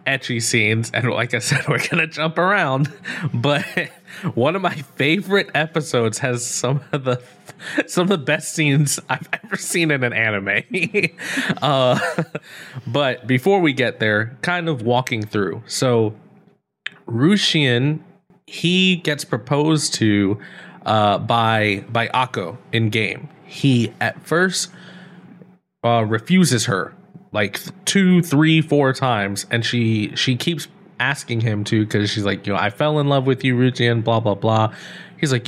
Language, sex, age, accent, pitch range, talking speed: English, male, 20-39, American, 120-170 Hz, 150 wpm